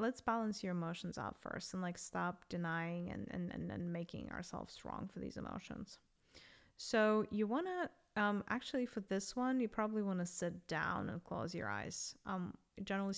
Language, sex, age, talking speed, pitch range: English, female, 10-29, 175 wpm, 180-215 Hz